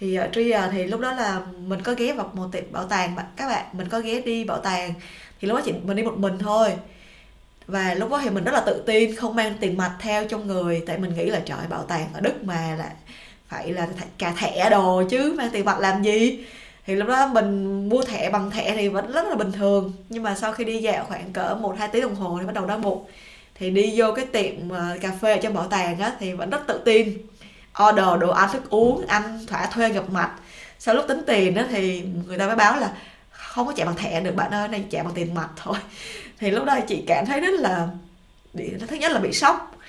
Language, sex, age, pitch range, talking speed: Vietnamese, female, 20-39, 185-225 Hz, 255 wpm